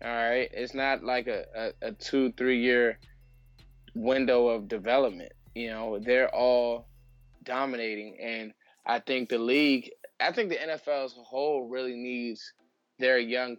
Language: English